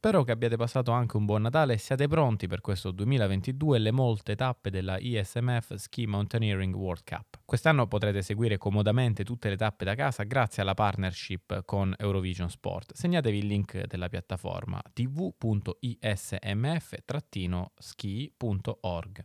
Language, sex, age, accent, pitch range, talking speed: Italian, male, 20-39, native, 95-125 Hz, 140 wpm